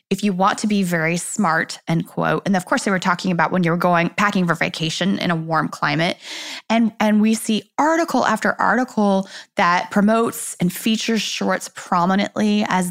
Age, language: 20-39, English